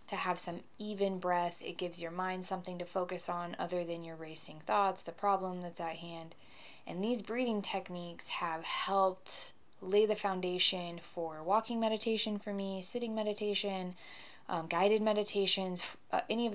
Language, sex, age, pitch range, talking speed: English, female, 20-39, 165-190 Hz, 165 wpm